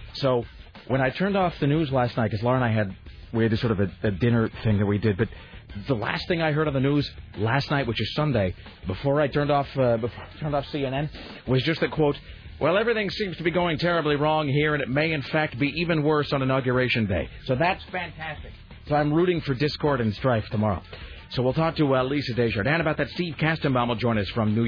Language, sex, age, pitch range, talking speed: English, male, 40-59, 110-150 Hz, 245 wpm